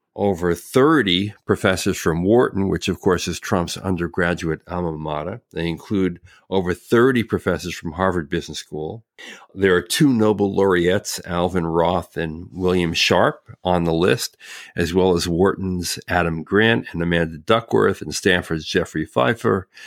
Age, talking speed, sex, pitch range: 50-69, 145 wpm, male, 85-100 Hz